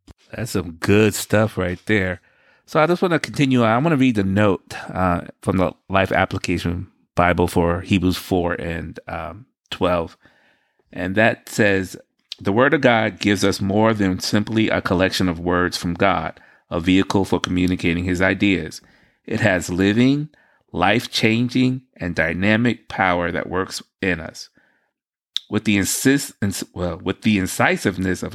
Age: 30-49